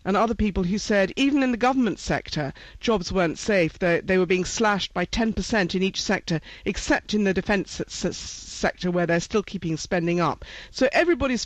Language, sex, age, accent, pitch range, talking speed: English, female, 50-69, British, 185-235 Hz, 185 wpm